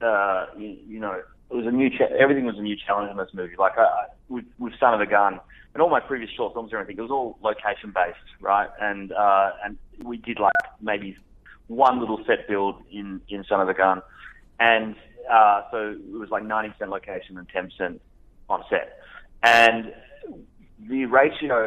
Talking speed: 205 wpm